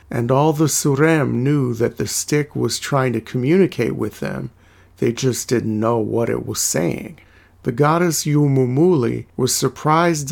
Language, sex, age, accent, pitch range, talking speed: English, male, 50-69, American, 120-145 Hz, 155 wpm